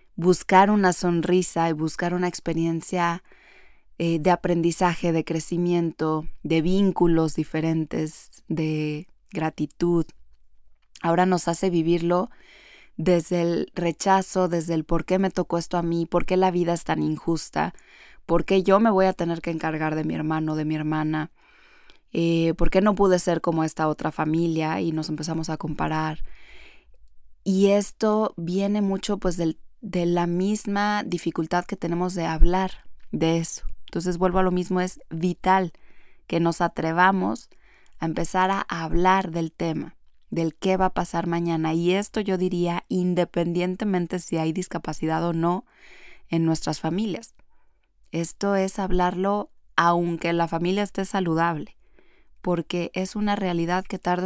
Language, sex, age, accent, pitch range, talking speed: Spanish, female, 20-39, Mexican, 165-185 Hz, 150 wpm